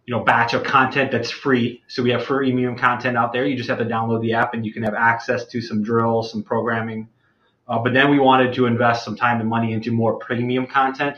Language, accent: English, American